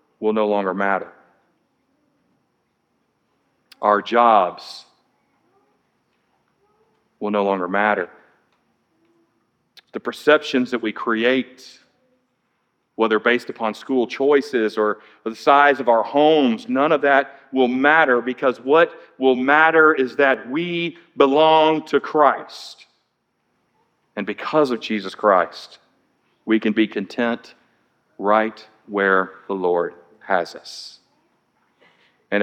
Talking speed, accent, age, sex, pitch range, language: 105 wpm, American, 40-59, male, 105-135 Hz, English